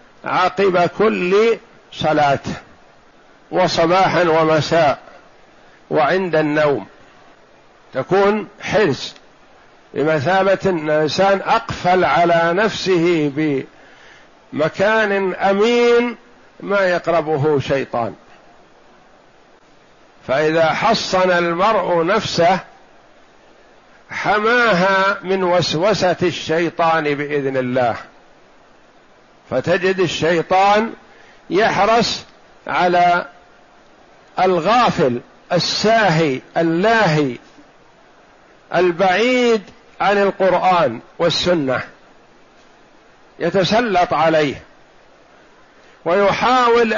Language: Arabic